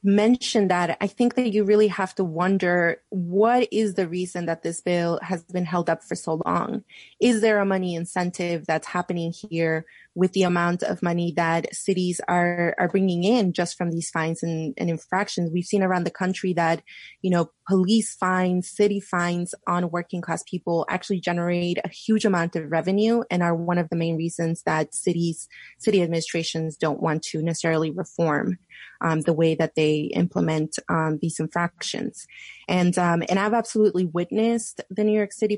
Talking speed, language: 180 wpm, English